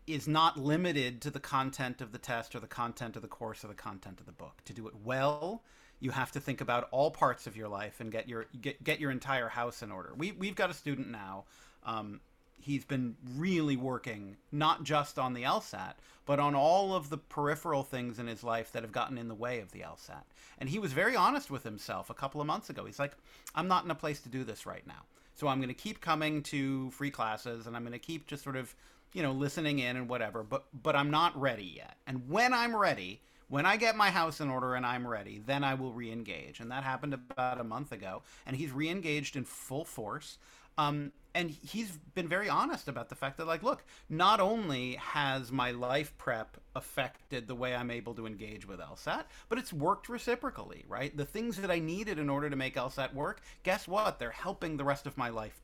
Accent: American